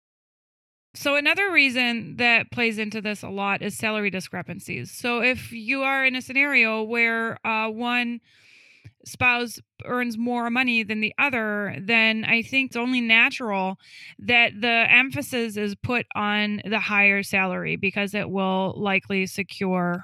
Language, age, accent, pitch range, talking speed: English, 20-39, American, 195-230 Hz, 145 wpm